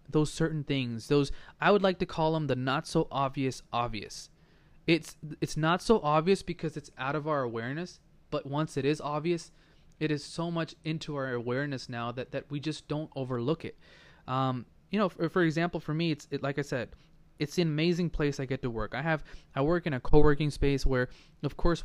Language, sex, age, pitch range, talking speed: English, male, 20-39, 130-160 Hz, 215 wpm